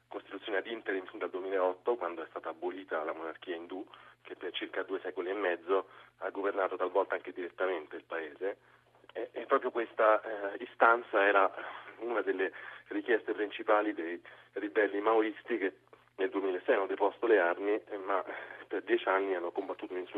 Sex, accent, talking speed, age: male, native, 160 wpm, 30-49